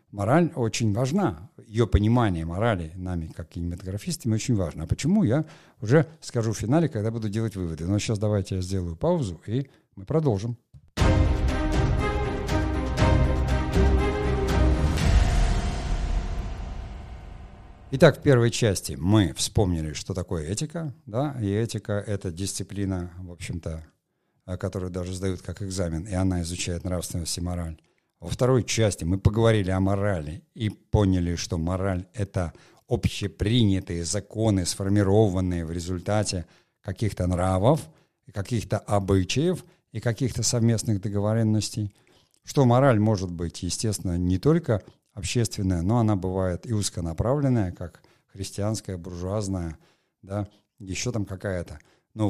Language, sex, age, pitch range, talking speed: Russian, male, 50-69, 90-115 Hz, 120 wpm